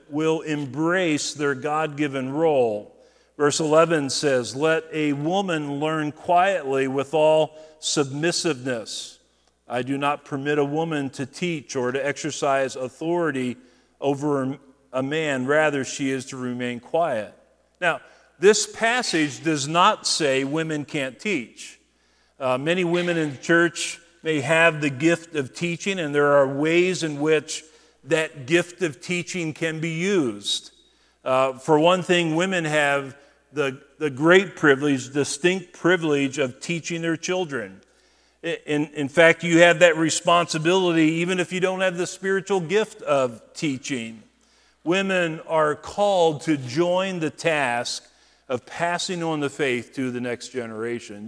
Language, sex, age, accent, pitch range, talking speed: English, male, 50-69, American, 135-170 Hz, 140 wpm